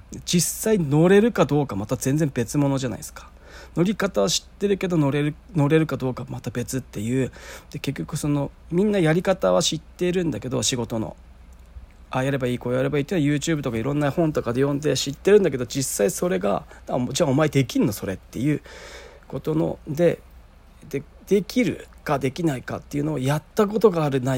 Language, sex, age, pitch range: Japanese, male, 40-59, 125-165 Hz